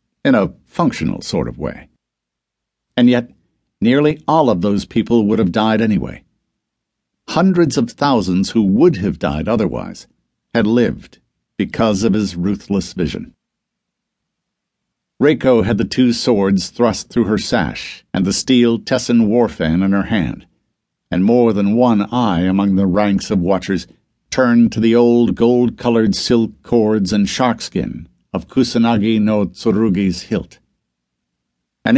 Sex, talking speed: male, 140 wpm